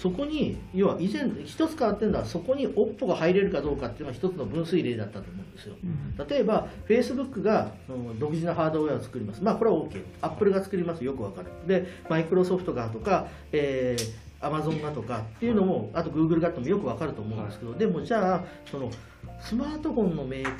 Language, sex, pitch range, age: Japanese, male, 115-190 Hz, 40-59